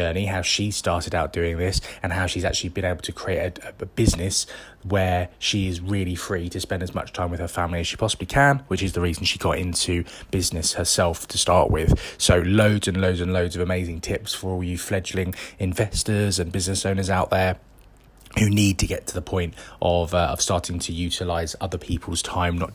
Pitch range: 85-95 Hz